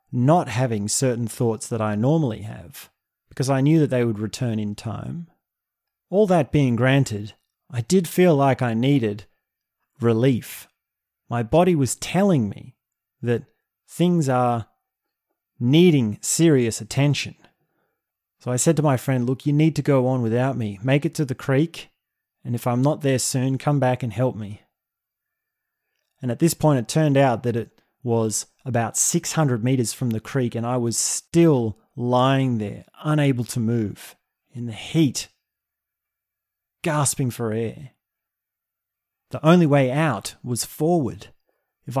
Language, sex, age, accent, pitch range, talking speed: English, male, 30-49, Australian, 115-145 Hz, 155 wpm